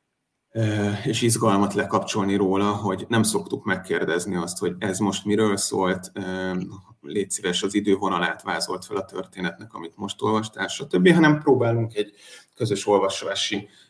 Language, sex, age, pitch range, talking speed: Hungarian, male, 30-49, 95-115 Hz, 135 wpm